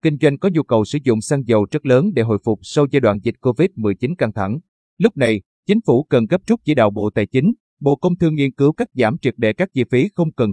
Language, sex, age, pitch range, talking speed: Vietnamese, male, 30-49, 110-150 Hz, 270 wpm